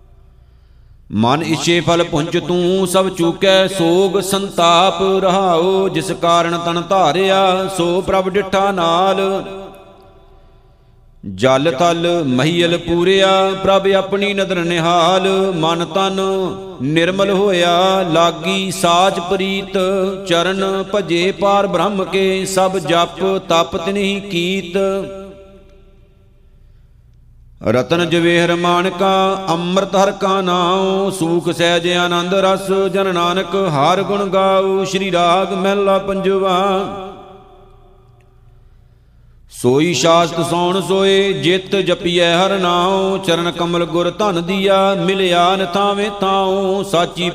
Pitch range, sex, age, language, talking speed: 170-195 Hz, male, 50-69, Punjabi, 105 wpm